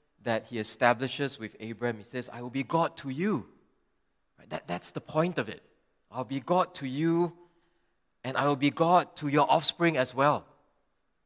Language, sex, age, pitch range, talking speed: English, male, 20-39, 115-145 Hz, 185 wpm